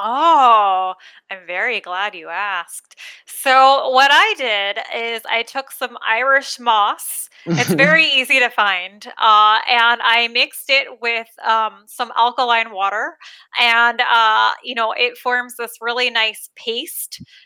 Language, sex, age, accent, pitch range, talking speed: English, female, 20-39, American, 225-275 Hz, 140 wpm